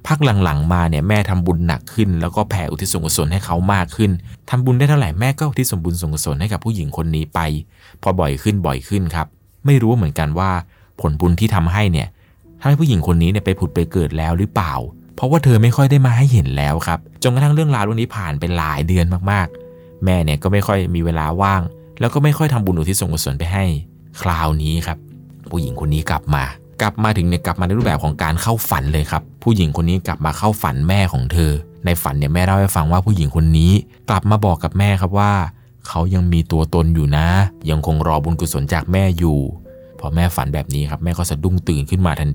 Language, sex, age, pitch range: Thai, male, 20-39, 80-105 Hz